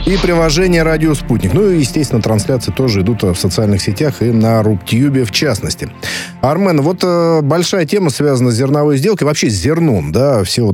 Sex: male